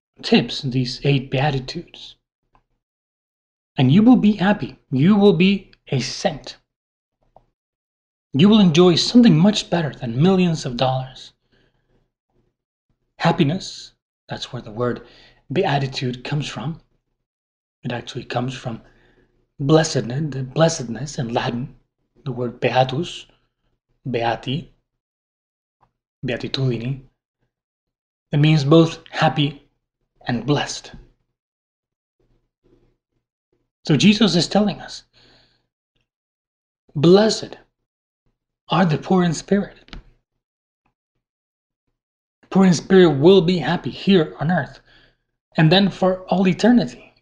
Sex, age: male, 30-49